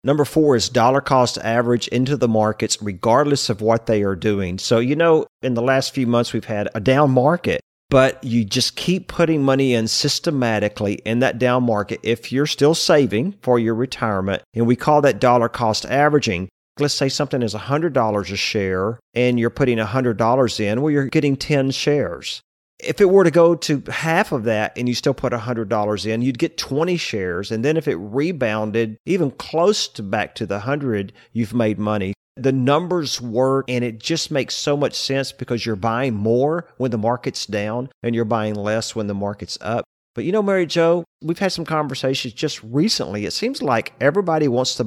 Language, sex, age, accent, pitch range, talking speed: English, male, 40-59, American, 110-145 Hz, 200 wpm